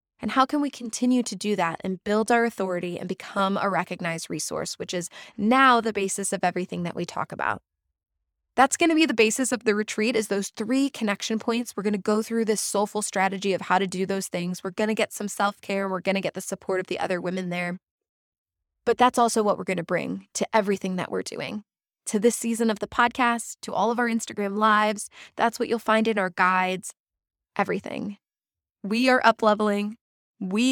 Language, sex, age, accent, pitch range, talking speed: English, female, 20-39, American, 190-235 Hz, 215 wpm